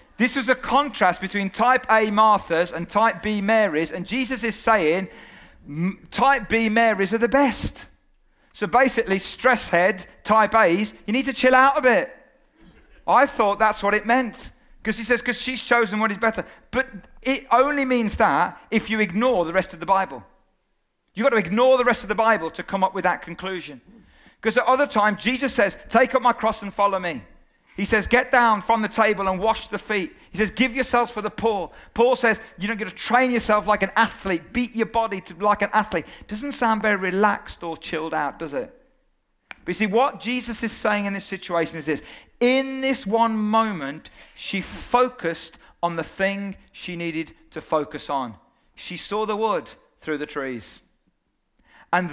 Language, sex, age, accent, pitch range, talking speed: English, male, 40-59, British, 185-240 Hz, 195 wpm